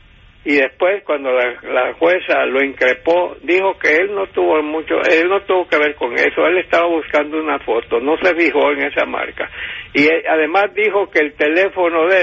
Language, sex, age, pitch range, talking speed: Spanish, male, 60-79, 150-185 Hz, 190 wpm